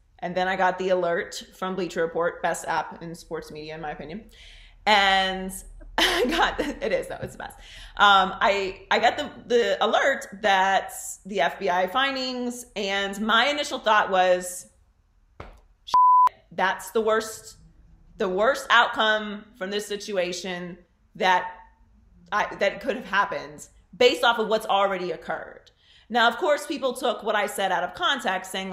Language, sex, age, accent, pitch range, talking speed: English, female, 30-49, American, 180-235 Hz, 155 wpm